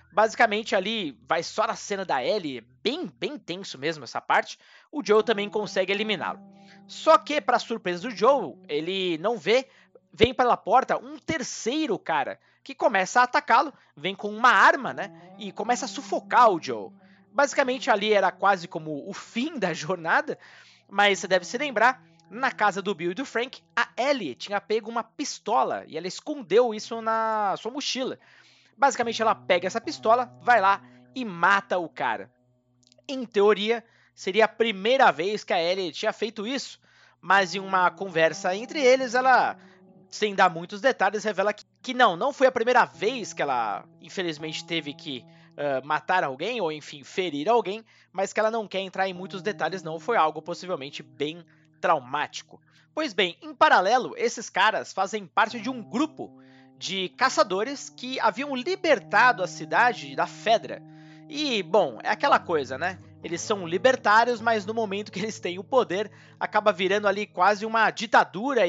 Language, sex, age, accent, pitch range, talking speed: Portuguese, male, 20-39, Brazilian, 180-240 Hz, 170 wpm